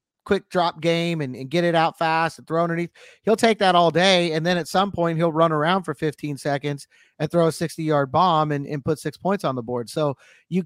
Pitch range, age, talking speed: 150-180 Hz, 30-49, 250 wpm